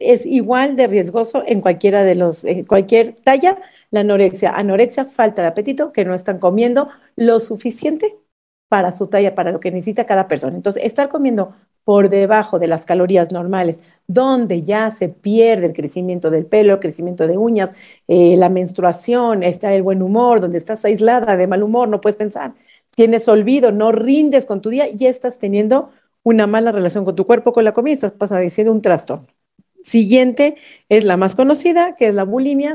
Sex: female